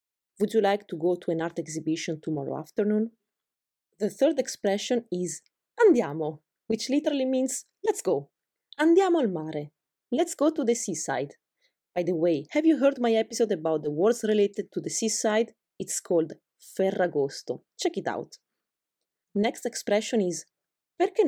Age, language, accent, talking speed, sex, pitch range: 30-49, English, Italian, 150 wpm, female, 170-250 Hz